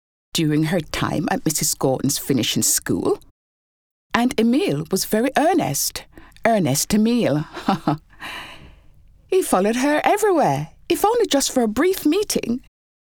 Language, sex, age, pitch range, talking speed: English, female, 60-79, 155-250 Hz, 120 wpm